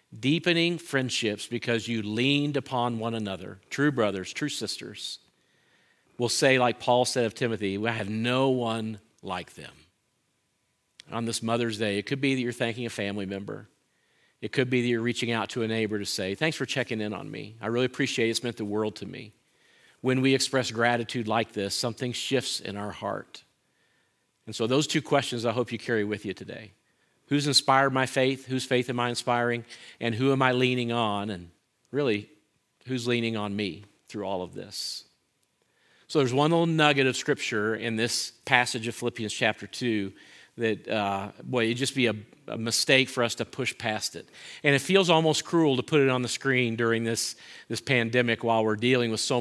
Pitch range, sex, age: 110-130 Hz, male, 50-69